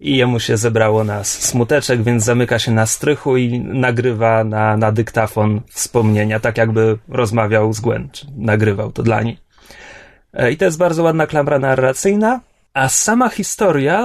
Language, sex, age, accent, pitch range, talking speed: Polish, male, 30-49, native, 120-165 Hz, 155 wpm